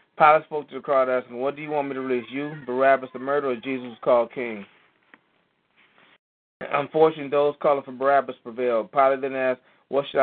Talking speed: 190 wpm